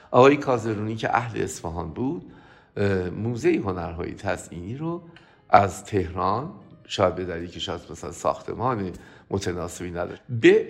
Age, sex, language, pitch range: 50-69, male, Persian, 90-130 Hz